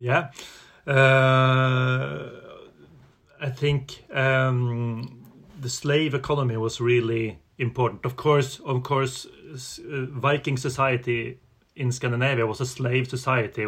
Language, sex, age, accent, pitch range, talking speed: English, male, 30-49, Swedish, 115-130 Hz, 100 wpm